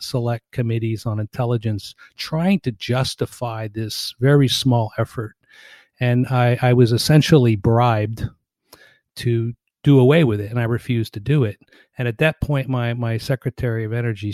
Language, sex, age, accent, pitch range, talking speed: English, male, 40-59, American, 110-130 Hz, 155 wpm